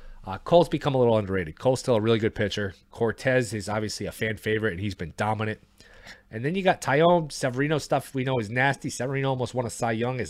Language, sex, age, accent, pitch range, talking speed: English, male, 30-49, American, 100-125 Hz, 235 wpm